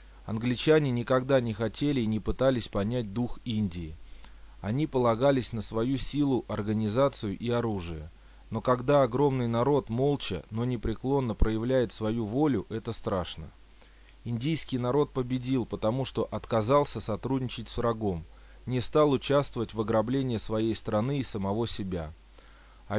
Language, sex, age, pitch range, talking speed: Russian, male, 30-49, 105-130 Hz, 130 wpm